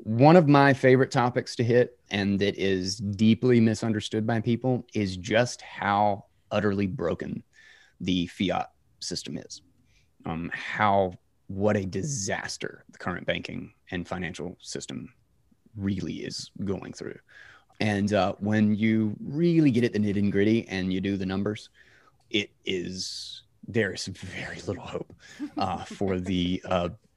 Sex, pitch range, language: male, 95-120 Hz, English